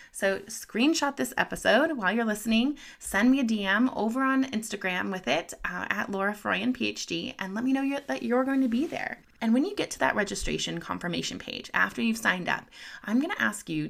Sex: female